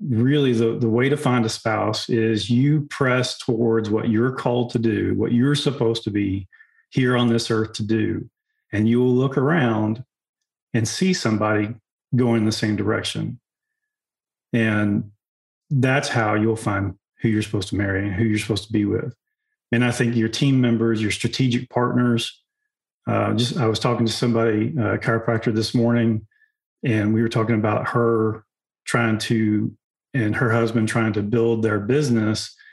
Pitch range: 110-125 Hz